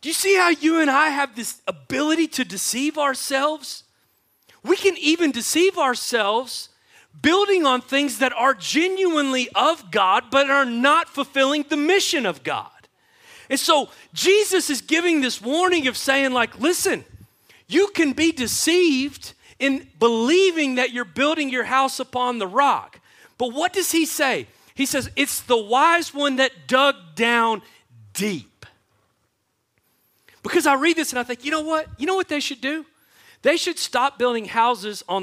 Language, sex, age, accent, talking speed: English, male, 40-59, American, 165 wpm